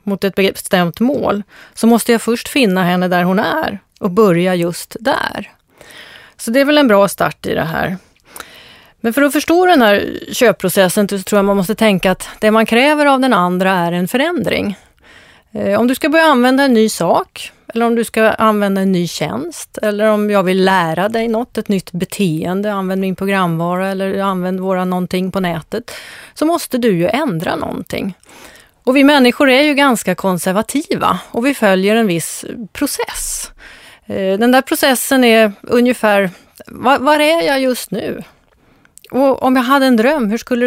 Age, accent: 30-49, native